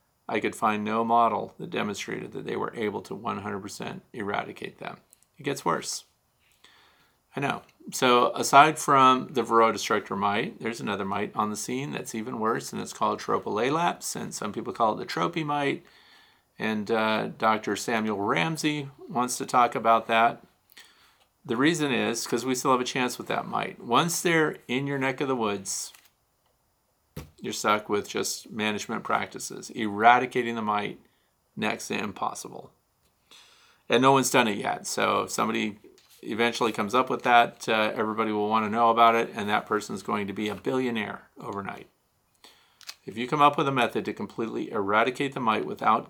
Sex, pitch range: male, 110-130 Hz